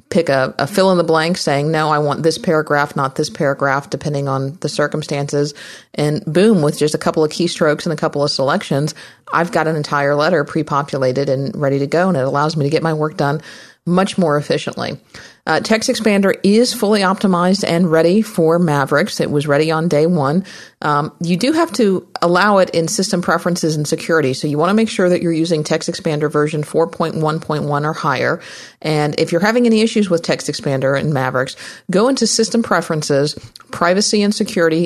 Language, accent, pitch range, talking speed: English, American, 145-175 Hz, 200 wpm